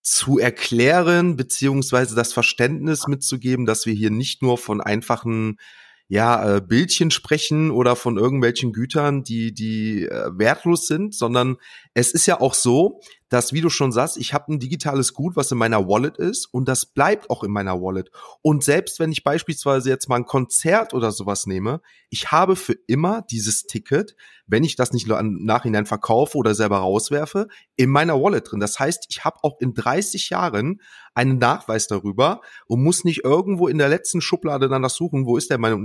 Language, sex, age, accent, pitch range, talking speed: German, male, 30-49, German, 115-155 Hz, 180 wpm